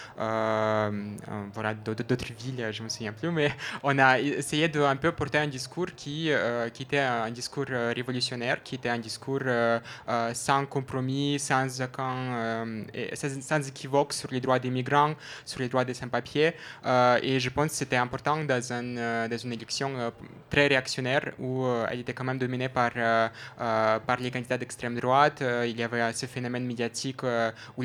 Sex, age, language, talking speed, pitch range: male, 20-39, French, 160 wpm, 120-135 Hz